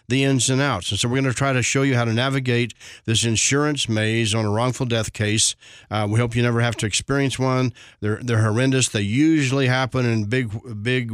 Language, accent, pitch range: English, American, 115-135 Hz